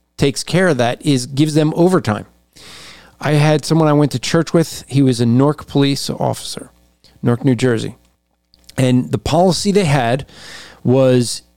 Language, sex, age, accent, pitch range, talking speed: English, male, 40-59, American, 110-160 Hz, 160 wpm